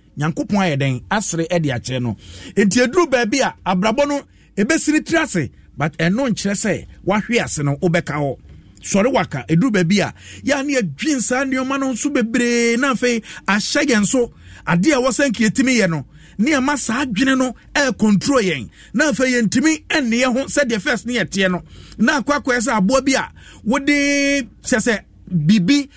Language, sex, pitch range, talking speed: English, male, 180-270 Hz, 150 wpm